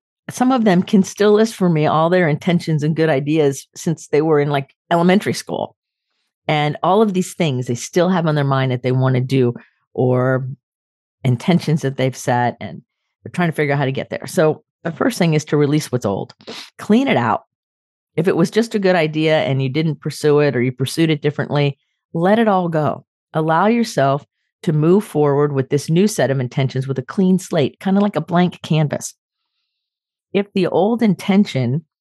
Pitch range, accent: 135-180 Hz, American